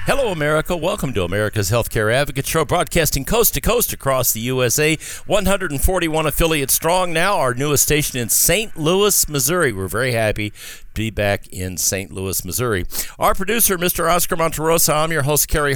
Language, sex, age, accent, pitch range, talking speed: English, male, 50-69, American, 105-150 Hz, 160 wpm